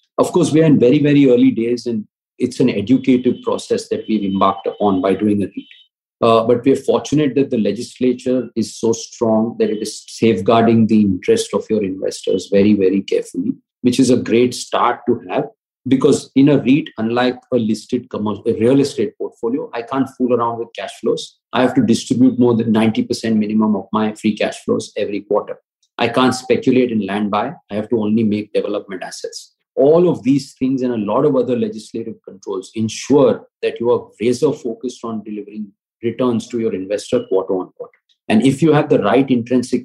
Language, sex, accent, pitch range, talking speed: English, male, Indian, 110-135 Hz, 195 wpm